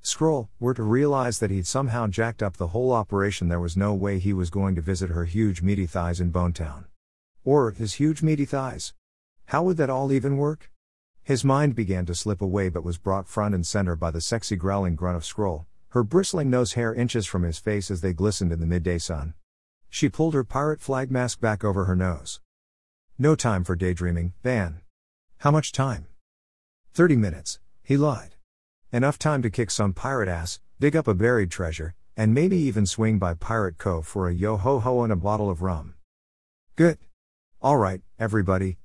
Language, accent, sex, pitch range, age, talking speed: English, American, male, 85-125 Hz, 50-69, 190 wpm